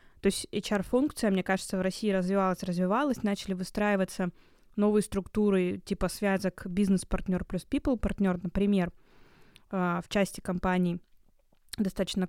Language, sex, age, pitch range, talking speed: Russian, female, 20-39, 190-210 Hz, 110 wpm